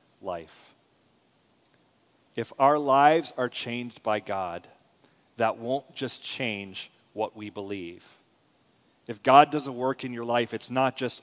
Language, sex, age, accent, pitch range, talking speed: English, male, 30-49, American, 110-130 Hz, 135 wpm